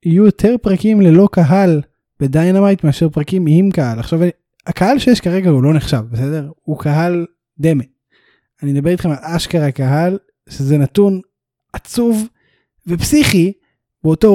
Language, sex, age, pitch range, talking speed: Hebrew, male, 20-39, 140-175 Hz, 135 wpm